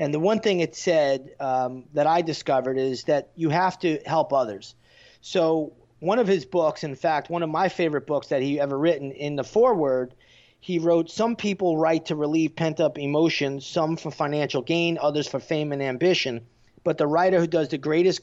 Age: 30-49